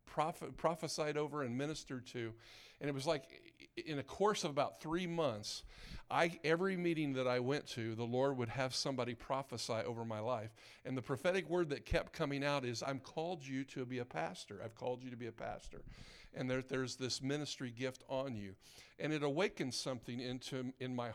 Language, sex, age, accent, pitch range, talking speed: English, male, 50-69, American, 125-155 Hz, 200 wpm